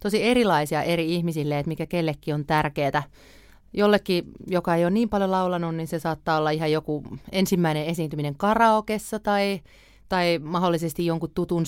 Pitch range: 155-180 Hz